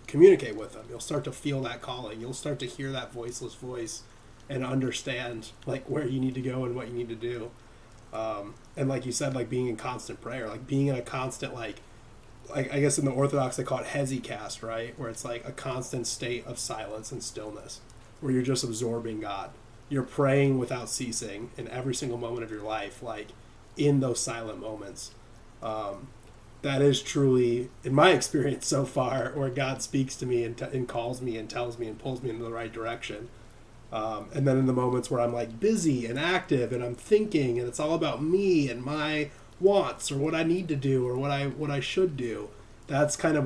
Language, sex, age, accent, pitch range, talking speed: English, male, 20-39, American, 115-135 Hz, 215 wpm